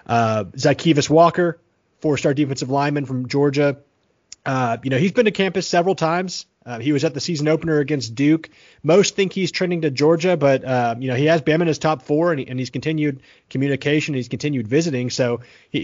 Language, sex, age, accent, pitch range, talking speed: English, male, 30-49, American, 130-155 Hz, 210 wpm